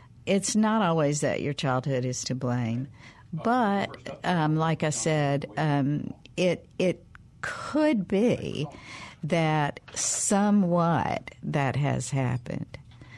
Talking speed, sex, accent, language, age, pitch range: 110 wpm, female, American, English, 60-79, 135-190 Hz